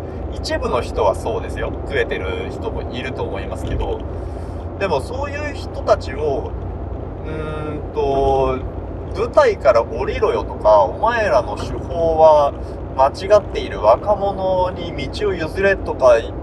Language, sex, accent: Japanese, male, native